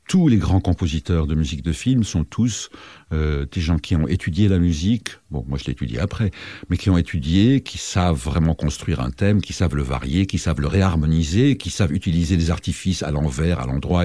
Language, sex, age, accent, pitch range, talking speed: French, male, 60-79, French, 85-120 Hz, 220 wpm